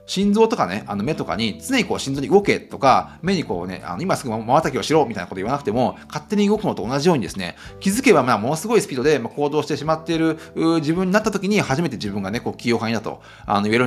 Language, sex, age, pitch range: Japanese, male, 30-49, 125-215 Hz